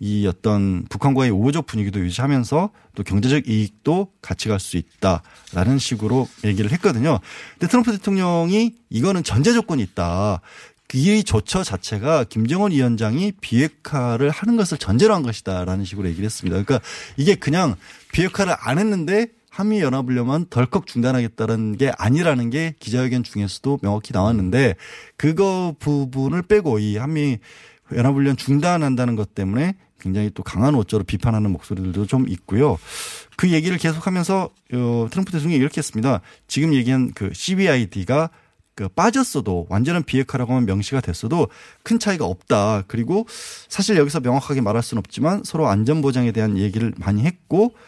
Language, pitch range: Korean, 105-170 Hz